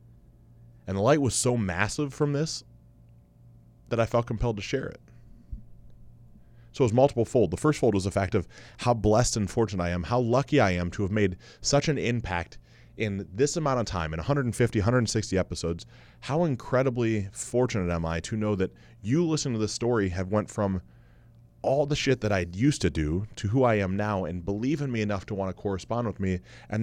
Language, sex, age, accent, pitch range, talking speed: English, male, 20-39, American, 100-125 Hz, 210 wpm